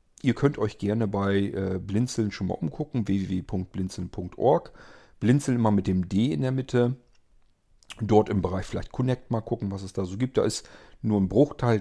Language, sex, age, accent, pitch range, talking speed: German, male, 40-59, German, 95-115 Hz, 185 wpm